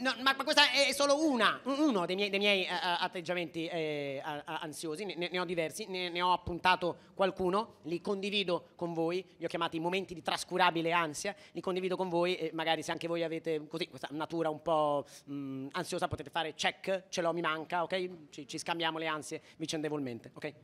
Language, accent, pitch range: Italian, native, 160-220 Hz